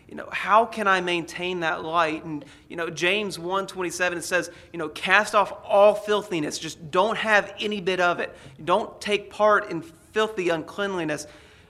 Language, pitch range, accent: English, 155-190 Hz, American